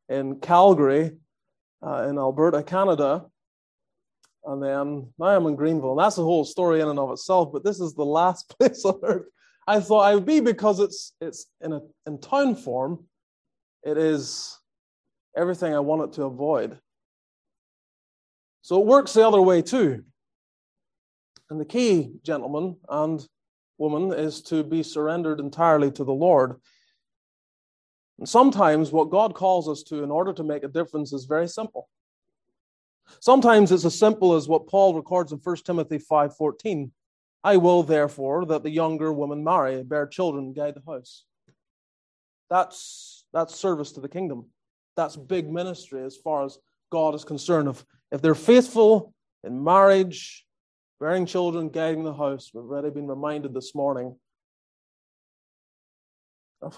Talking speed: 150 wpm